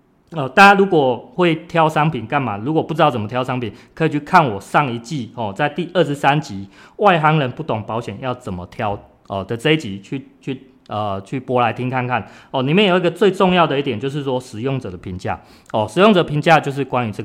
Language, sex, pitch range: Chinese, male, 110-155 Hz